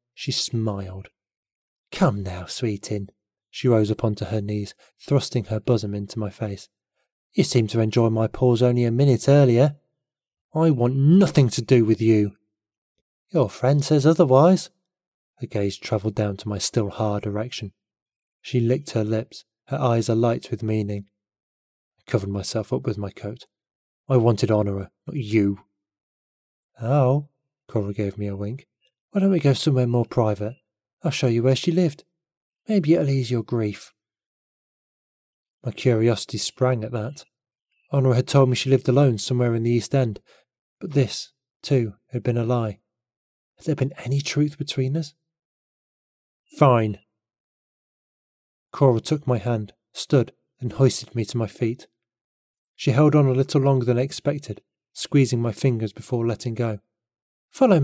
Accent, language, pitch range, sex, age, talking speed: British, English, 105-135 Hz, male, 20-39, 155 wpm